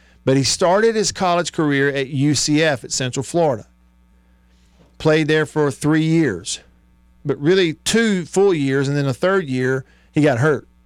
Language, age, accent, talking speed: English, 50-69, American, 165 wpm